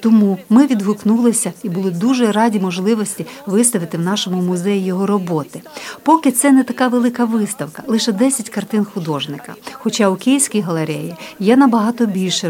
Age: 50-69